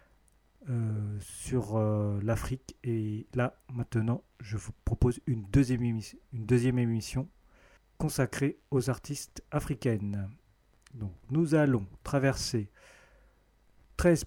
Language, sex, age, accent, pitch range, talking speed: French, male, 40-59, French, 110-135 Hz, 105 wpm